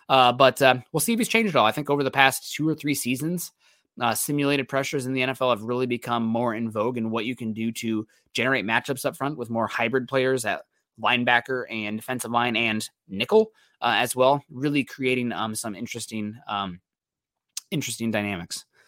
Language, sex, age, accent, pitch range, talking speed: English, male, 20-39, American, 110-140 Hz, 200 wpm